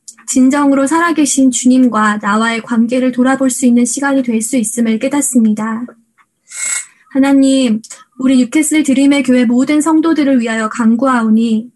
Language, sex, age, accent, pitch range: Korean, female, 20-39, native, 230-270 Hz